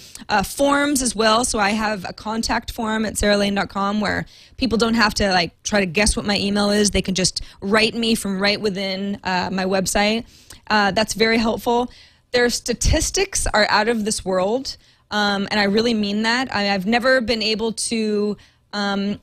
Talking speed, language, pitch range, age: 185 wpm, English, 205-255 Hz, 20-39